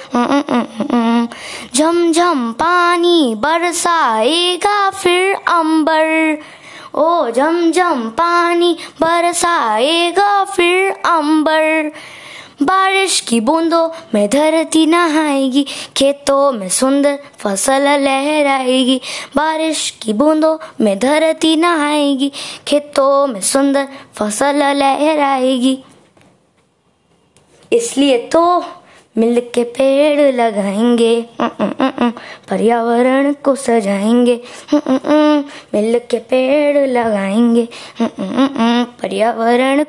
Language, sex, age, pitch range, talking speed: Hindi, male, 20-39, 240-320 Hz, 75 wpm